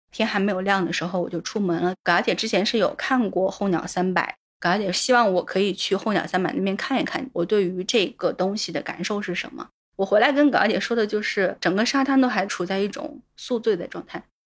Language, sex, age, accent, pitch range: Chinese, female, 20-39, native, 180-235 Hz